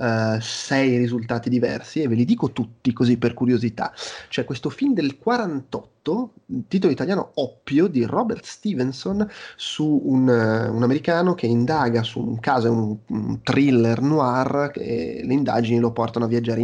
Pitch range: 120-180 Hz